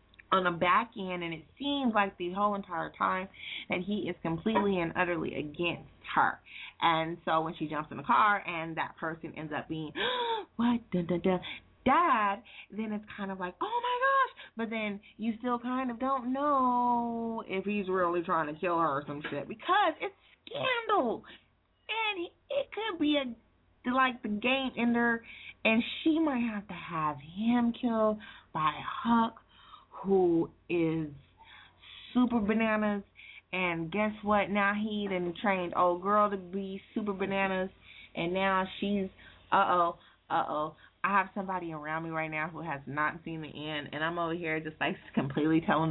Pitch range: 165-230 Hz